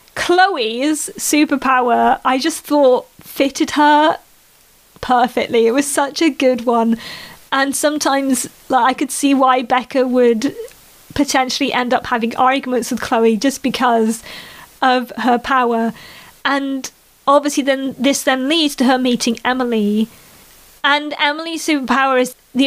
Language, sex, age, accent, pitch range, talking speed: English, female, 30-49, British, 250-295 Hz, 130 wpm